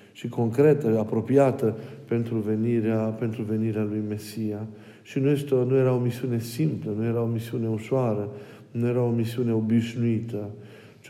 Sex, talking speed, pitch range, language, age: male, 150 wpm, 110-125 Hz, Romanian, 50-69